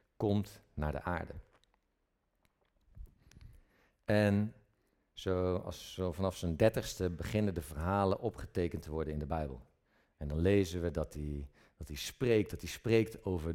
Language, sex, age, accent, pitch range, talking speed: Dutch, male, 50-69, Dutch, 85-115 Hz, 135 wpm